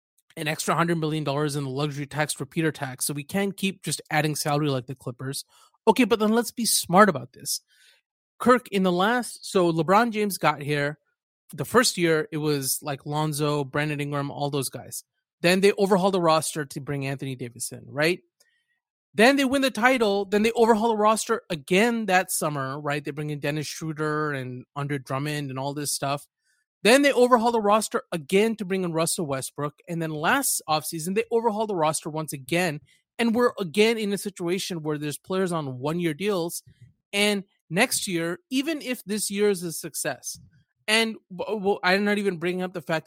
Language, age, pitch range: English, 30-49, 150-210 Hz